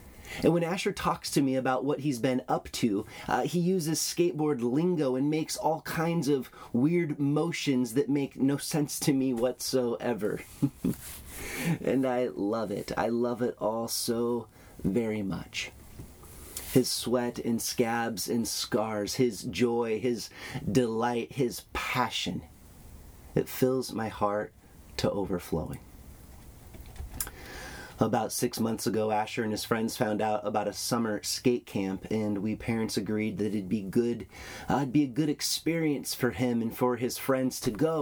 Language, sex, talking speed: English, male, 155 wpm